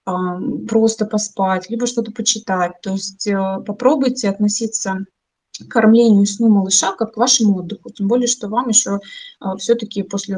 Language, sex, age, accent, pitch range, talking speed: Russian, female, 20-39, native, 195-240 Hz, 140 wpm